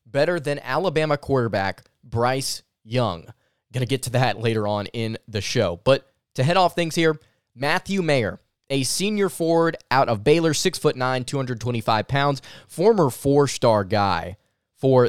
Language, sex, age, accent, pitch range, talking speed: English, male, 20-39, American, 120-145 Hz, 150 wpm